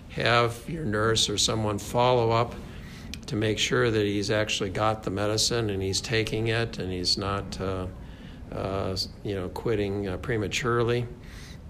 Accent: American